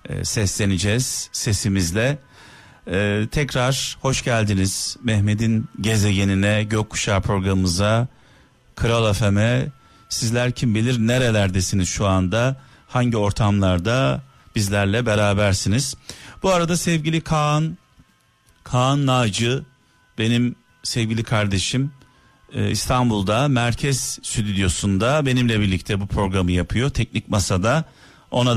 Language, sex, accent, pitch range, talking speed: Turkish, male, native, 105-135 Hz, 90 wpm